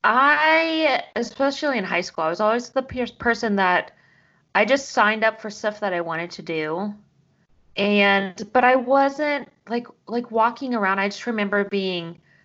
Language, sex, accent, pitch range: English, female, American, 195-255 Hz